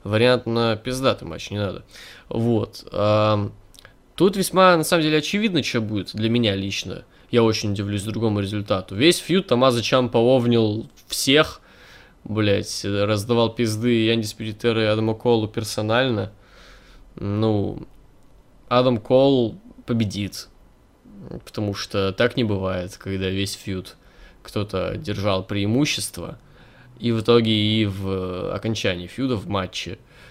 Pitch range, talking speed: 100-120 Hz, 125 wpm